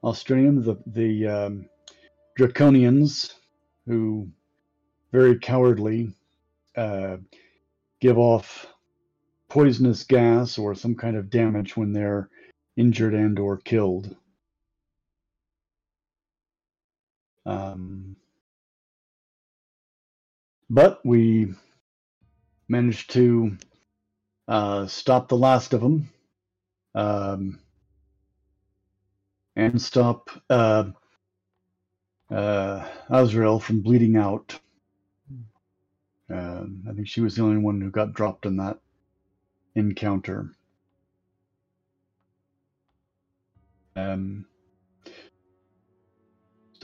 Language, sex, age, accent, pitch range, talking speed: English, male, 50-69, American, 95-115 Hz, 75 wpm